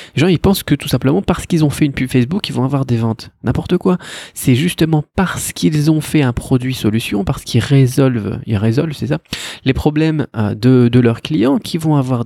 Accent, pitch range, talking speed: French, 115-155 Hz, 225 wpm